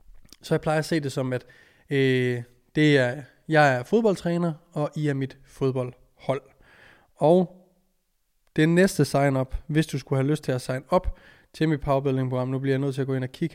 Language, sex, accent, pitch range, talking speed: Danish, male, native, 130-170 Hz, 195 wpm